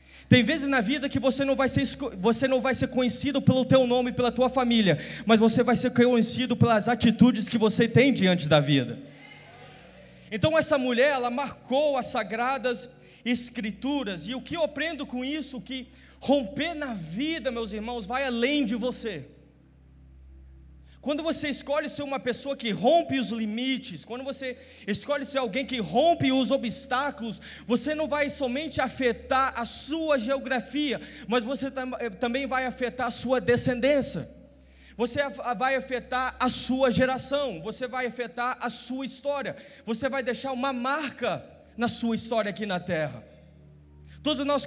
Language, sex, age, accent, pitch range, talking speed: Portuguese, male, 20-39, Brazilian, 225-270 Hz, 155 wpm